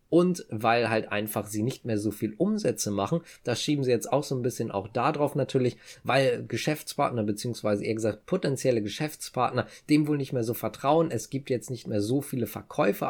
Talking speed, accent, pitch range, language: 200 wpm, German, 105-140 Hz, German